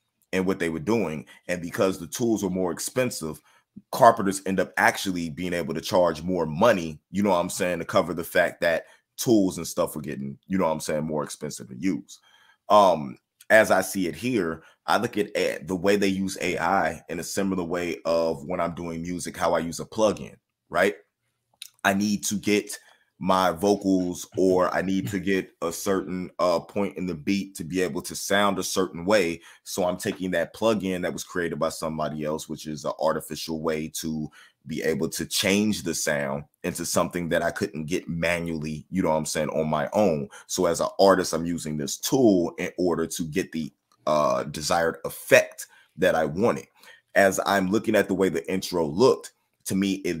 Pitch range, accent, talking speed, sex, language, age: 80-95 Hz, American, 205 wpm, male, English, 30-49